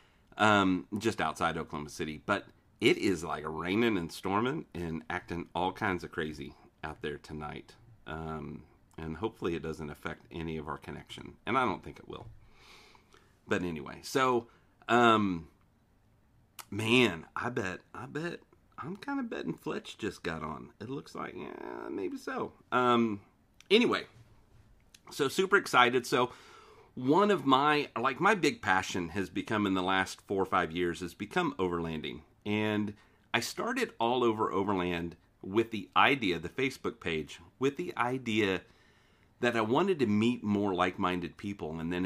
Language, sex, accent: English, male, American